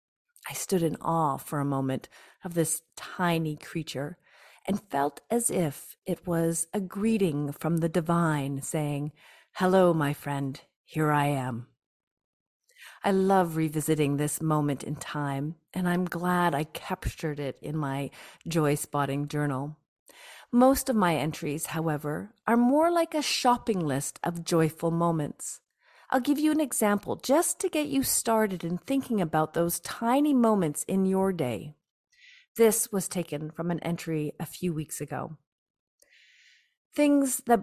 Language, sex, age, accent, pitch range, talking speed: English, female, 40-59, American, 150-205 Hz, 145 wpm